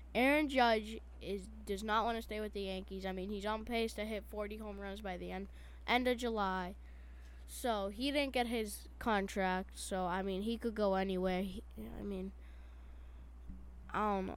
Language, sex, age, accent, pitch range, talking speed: English, female, 10-29, American, 165-225 Hz, 190 wpm